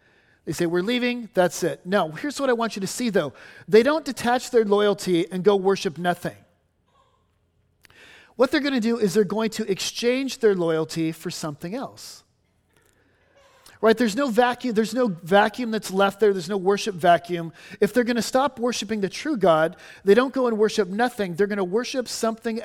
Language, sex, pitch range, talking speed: English, male, 165-230 Hz, 190 wpm